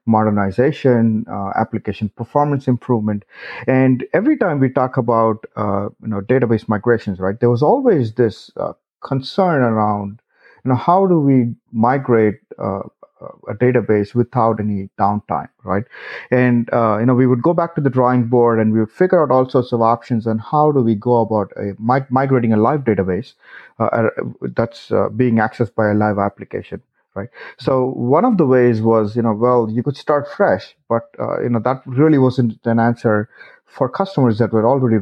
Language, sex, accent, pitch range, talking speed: English, male, Indian, 110-130 Hz, 180 wpm